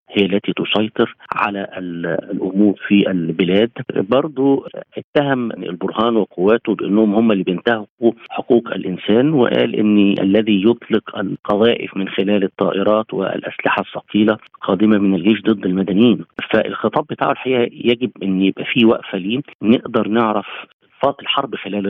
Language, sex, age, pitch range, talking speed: Arabic, male, 50-69, 95-110 Hz, 125 wpm